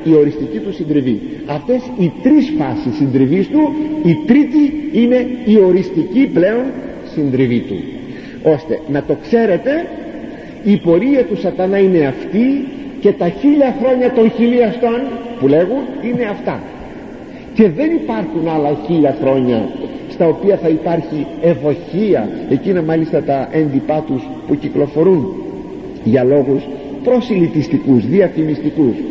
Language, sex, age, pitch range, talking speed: Greek, male, 50-69, 140-235 Hz, 115 wpm